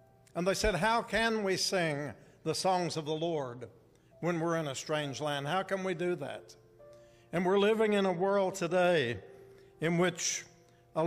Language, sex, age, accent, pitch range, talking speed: English, male, 60-79, American, 145-190 Hz, 180 wpm